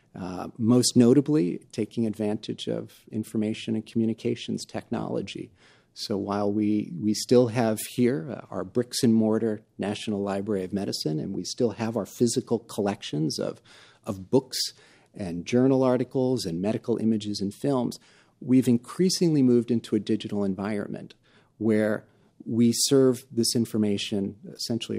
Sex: male